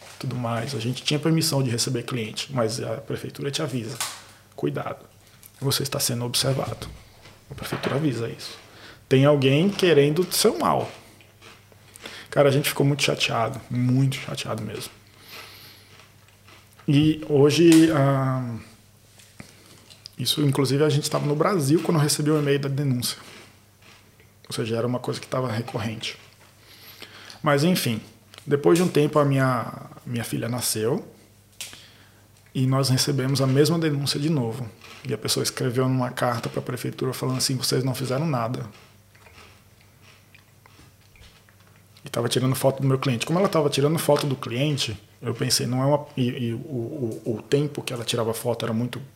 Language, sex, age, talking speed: Portuguese, male, 20-39, 155 wpm